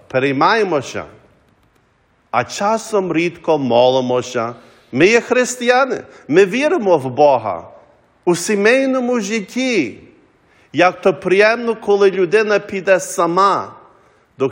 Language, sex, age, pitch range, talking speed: English, male, 50-69, 155-210 Hz, 95 wpm